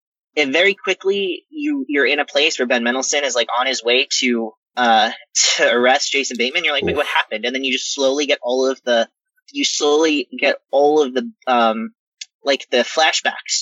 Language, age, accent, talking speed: English, 20-39, American, 205 wpm